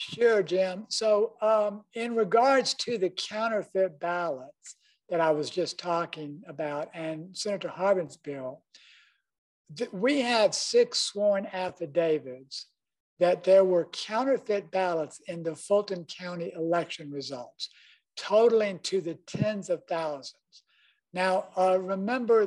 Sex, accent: male, American